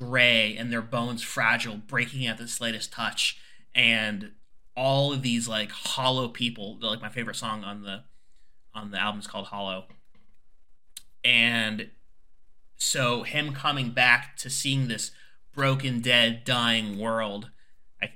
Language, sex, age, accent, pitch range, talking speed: English, male, 30-49, American, 110-130 Hz, 140 wpm